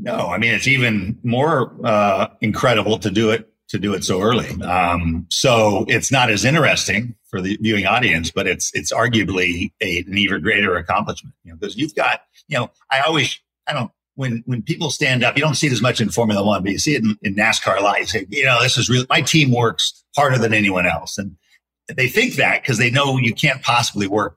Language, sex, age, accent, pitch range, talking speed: English, male, 50-69, American, 95-130 Hz, 230 wpm